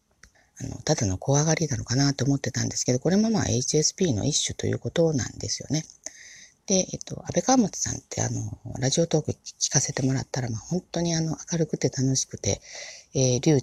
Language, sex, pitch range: Japanese, female, 115-155 Hz